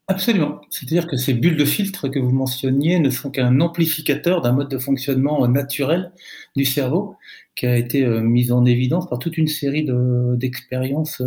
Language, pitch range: French, 135-190 Hz